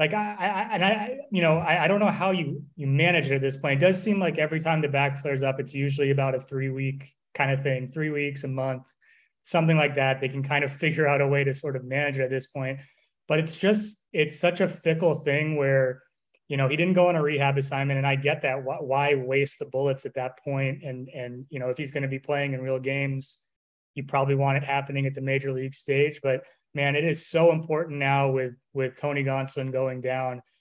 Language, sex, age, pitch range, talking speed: English, male, 20-39, 135-155 Hz, 250 wpm